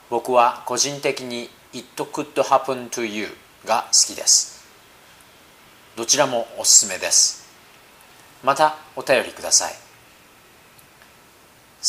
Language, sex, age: Japanese, male, 40-59